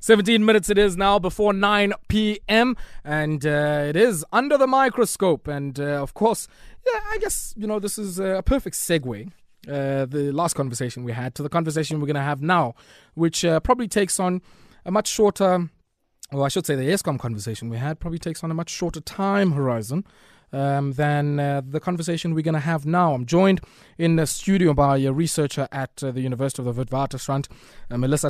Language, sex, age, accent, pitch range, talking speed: English, male, 20-39, South African, 140-185 Hz, 195 wpm